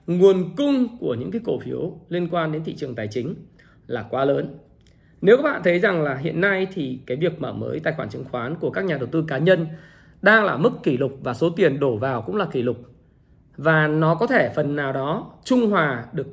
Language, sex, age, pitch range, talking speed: Vietnamese, male, 20-39, 140-190 Hz, 240 wpm